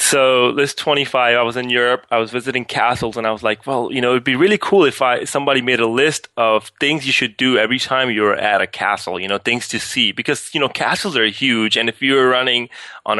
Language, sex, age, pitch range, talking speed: English, male, 20-39, 110-125 Hz, 255 wpm